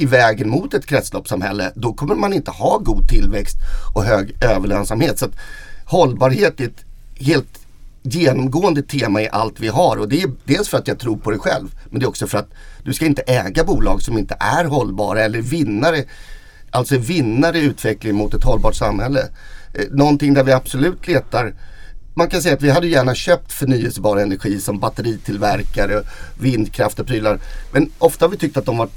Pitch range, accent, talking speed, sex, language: 105-140 Hz, native, 190 wpm, male, Swedish